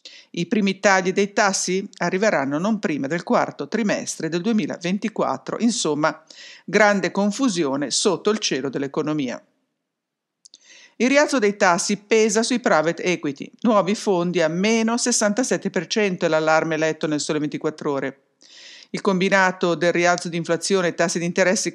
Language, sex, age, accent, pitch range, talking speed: English, female, 50-69, Italian, 160-210 Hz, 140 wpm